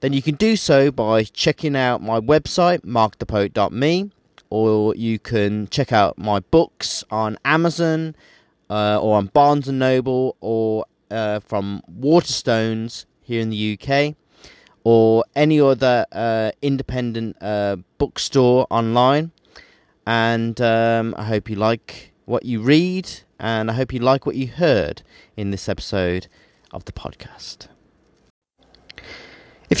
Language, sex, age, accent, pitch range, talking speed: English, male, 30-49, British, 105-140 Hz, 130 wpm